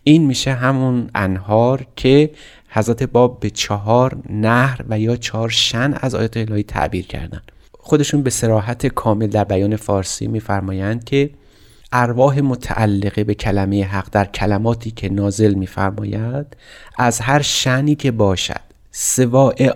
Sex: male